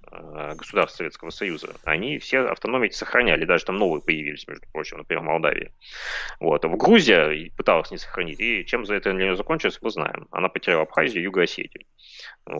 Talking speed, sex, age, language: 170 wpm, male, 30-49, Russian